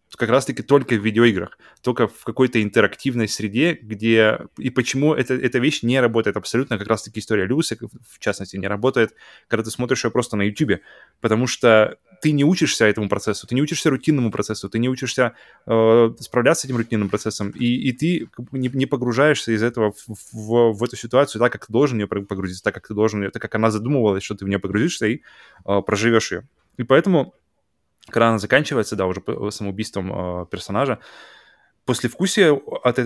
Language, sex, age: Russian, male, 20-39